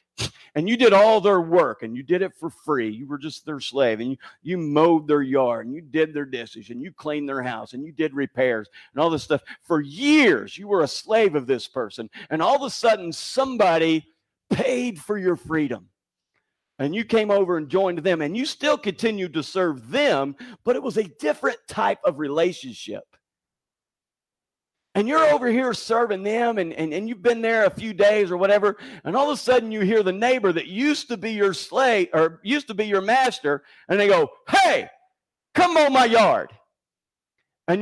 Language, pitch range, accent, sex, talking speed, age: English, 160-250 Hz, American, male, 205 wpm, 50-69